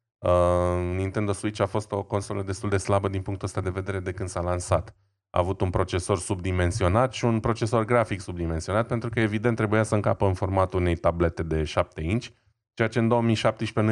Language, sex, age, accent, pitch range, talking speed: Romanian, male, 20-39, native, 90-105 Hz, 200 wpm